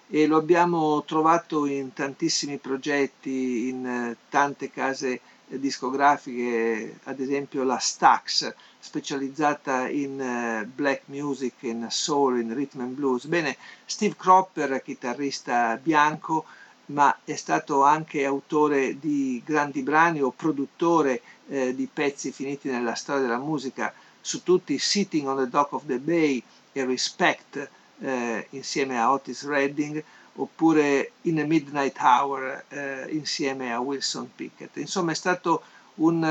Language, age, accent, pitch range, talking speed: Italian, 50-69, native, 135-155 Hz, 125 wpm